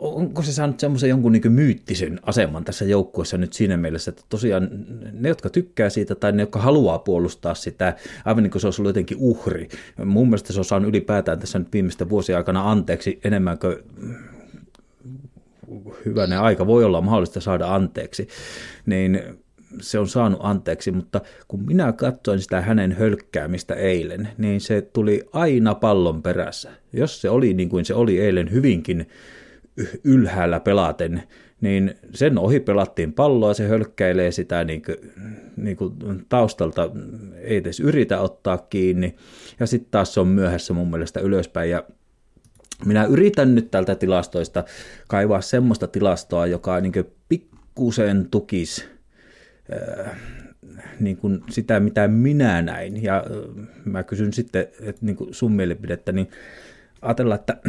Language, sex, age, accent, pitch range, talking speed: Finnish, male, 30-49, native, 90-115 Hz, 145 wpm